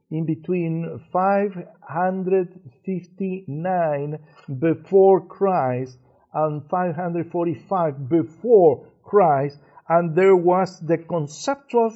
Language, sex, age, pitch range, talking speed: English, male, 50-69, 165-205 Hz, 70 wpm